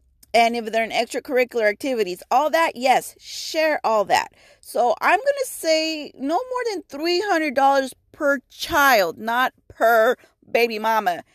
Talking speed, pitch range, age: 145 wpm, 230-285 Hz, 30-49